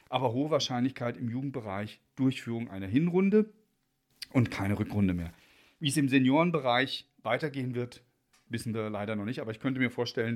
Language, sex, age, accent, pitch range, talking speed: German, male, 40-59, German, 120-165 Hz, 160 wpm